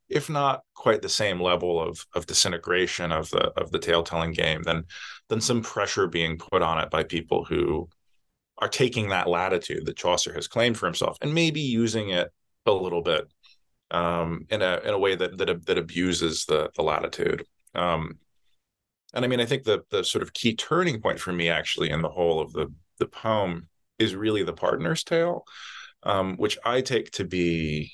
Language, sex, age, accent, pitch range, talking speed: English, male, 30-49, American, 85-135 Hz, 195 wpm